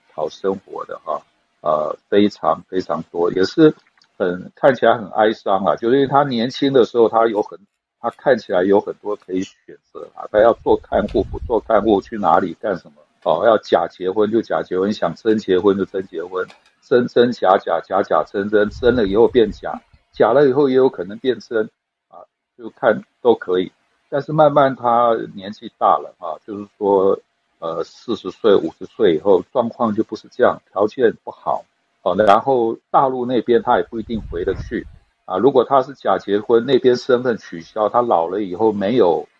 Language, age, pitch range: Chinese, 60-79, 105-155 Hz